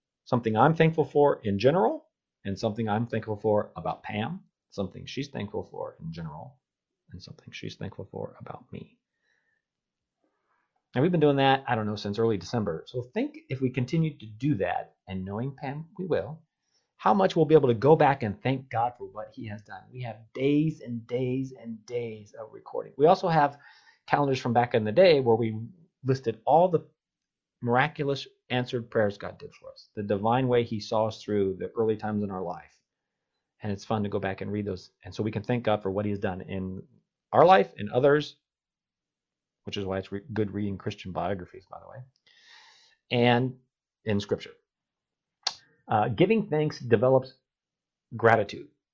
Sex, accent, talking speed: male, American, 185 wpm